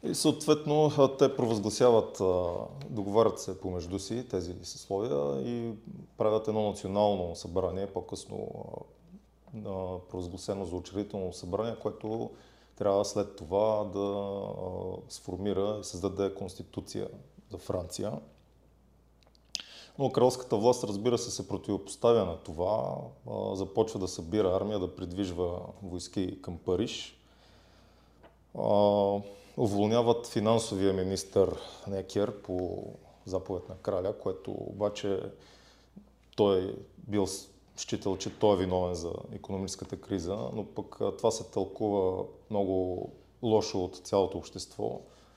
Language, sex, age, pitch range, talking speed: Bulgarian, male, 30-49, 95-110 Hz, 105 wpm